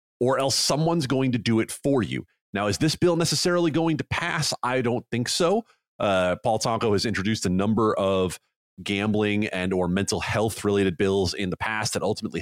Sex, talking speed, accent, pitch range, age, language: male, 195 wpm, American, 105-155 Hz, 30-49, English